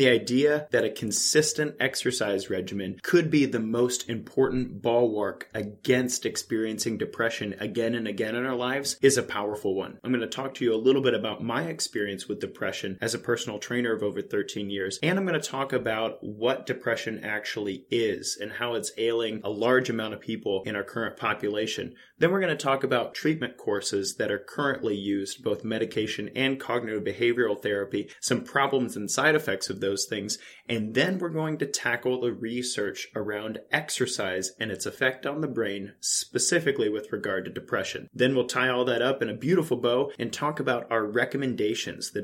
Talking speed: 190 wpm